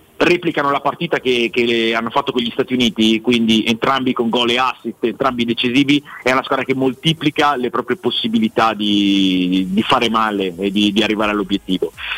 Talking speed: 175 wpm